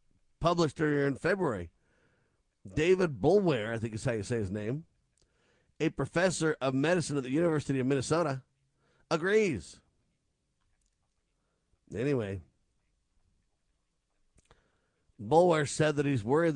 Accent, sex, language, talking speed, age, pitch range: American, male, English, 110 wpm, 50-69, 125-165 Hz